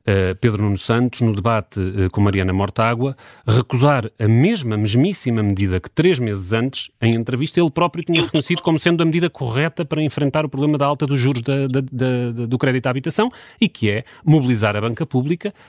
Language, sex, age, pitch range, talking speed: Portuguese, male, 30-49, 110-145 Hz, 180 wpm